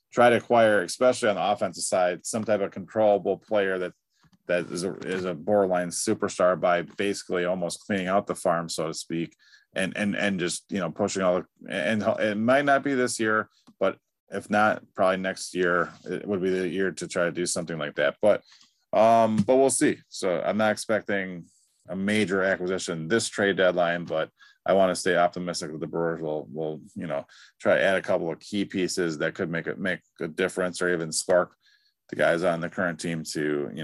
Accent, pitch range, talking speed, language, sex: American, 85-110 Hz, 210 wpm, English, male